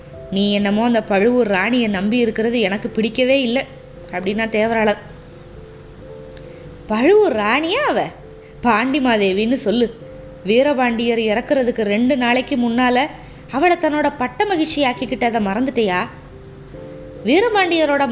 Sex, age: female, 20-39